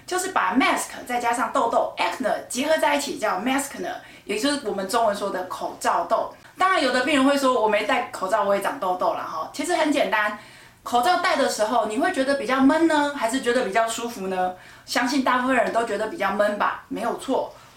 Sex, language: female, Chinese